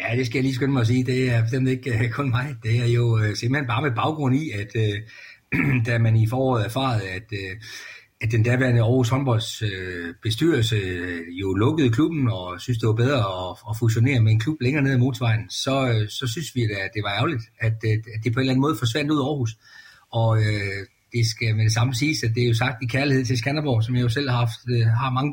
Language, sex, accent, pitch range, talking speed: Danish, male, native, 110-130 Hz, 235 wpm